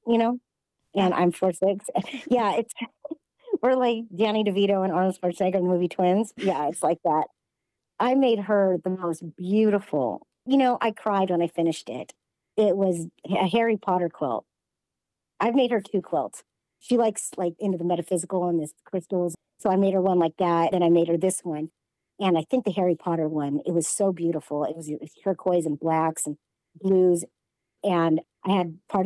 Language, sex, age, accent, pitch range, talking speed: English, male, 50-69, American, 165-195 Hz, 195 wpm